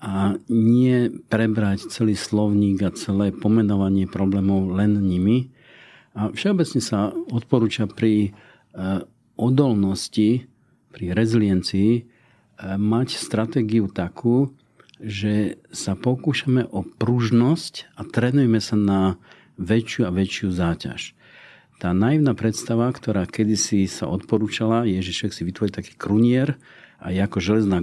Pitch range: 100-120 Hz